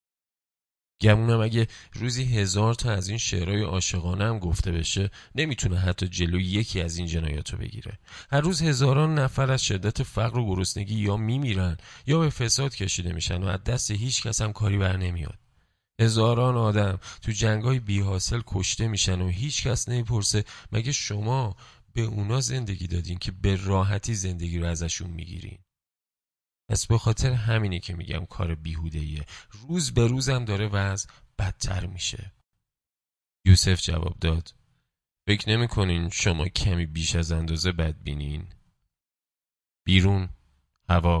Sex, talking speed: male, 145 wpm